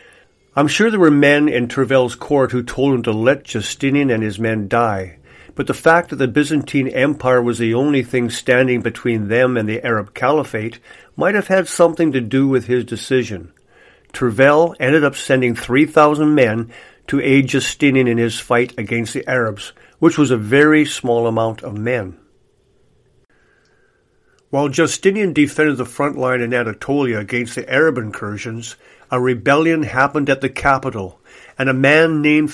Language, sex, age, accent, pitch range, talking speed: English, male, 50-69, American, 115-150 Hz, 165 wpm